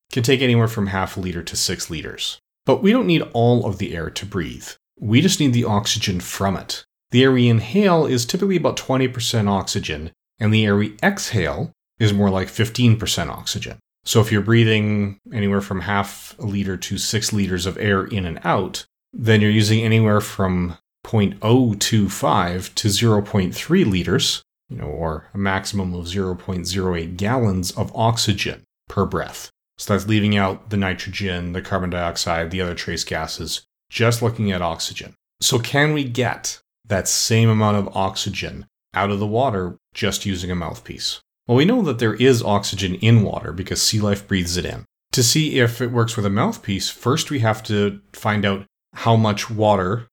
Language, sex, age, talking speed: English, male, 30-49, 175 wpm